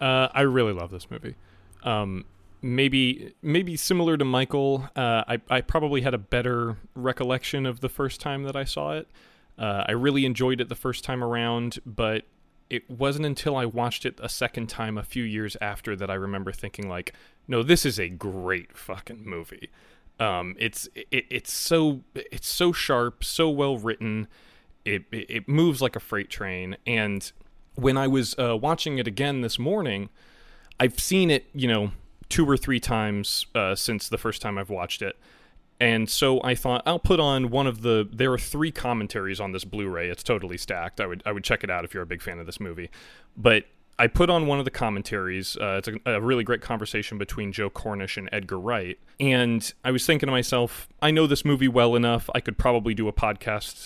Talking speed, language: 200 wpm, English